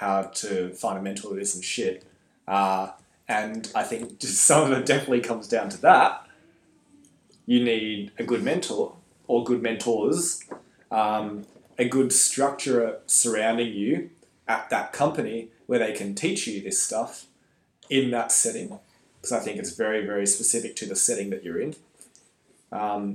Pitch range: 95-120 Hz